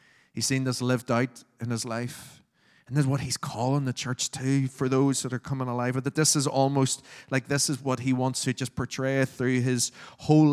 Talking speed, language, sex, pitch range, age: 220 wpm, English, male, 125-145 Hz, 20-39